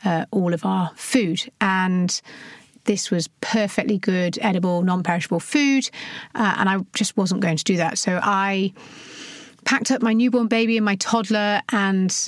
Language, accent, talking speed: English, British, 165 wpm